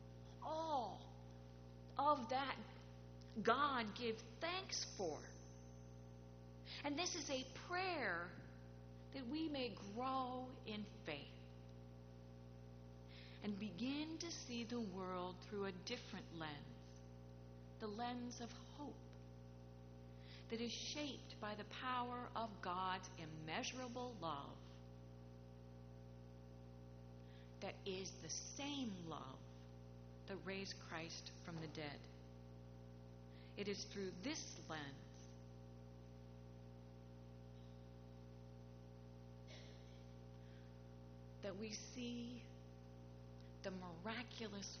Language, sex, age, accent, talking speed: English, female, 50-69, American, 85 wpm